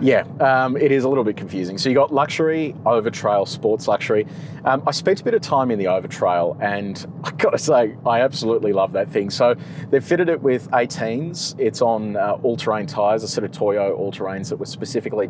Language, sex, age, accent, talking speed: English, male, 30-49, Australian, 210 wpm